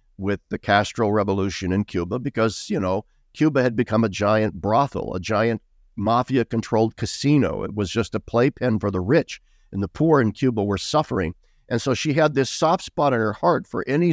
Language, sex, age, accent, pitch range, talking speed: English, male, 50-69, American, 100-135 Hz, 195 wpm